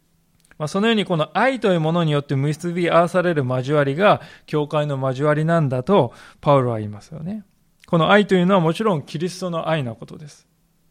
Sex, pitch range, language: male, 145-190 Hz, Japanese